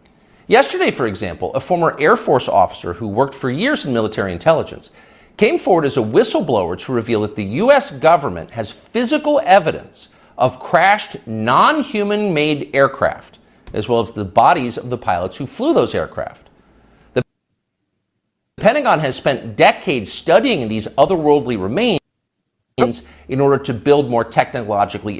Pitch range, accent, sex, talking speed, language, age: 100-165 Hz, American, male, 145 wpm, English, 50-69